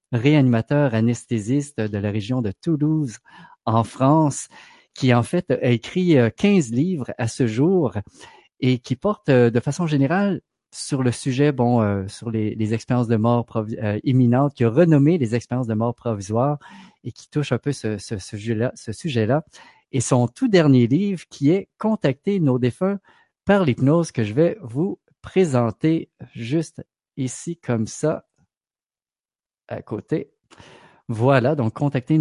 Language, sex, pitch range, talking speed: French, male, 115-150 Hz, 160 wpm